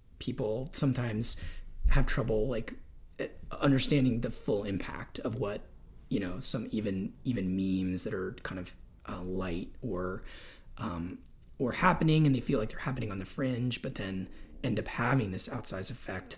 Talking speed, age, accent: 160 wpm, 30-49, American